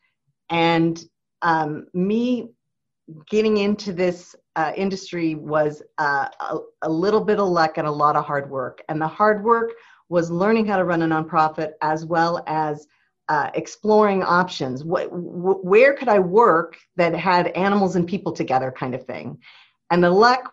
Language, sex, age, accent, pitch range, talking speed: English, female, 50-69, American, 155-185 Hz, 160 wpm